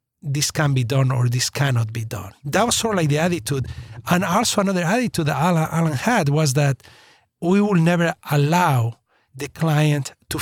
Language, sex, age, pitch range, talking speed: English, male, 50-69, 130-175 Hz, 190 wpm